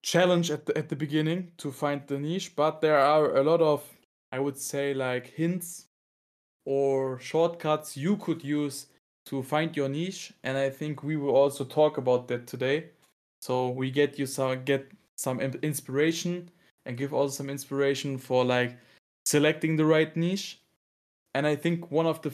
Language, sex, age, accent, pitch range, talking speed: English, male, 20-39, German, 135-160 Hz, 175 wpm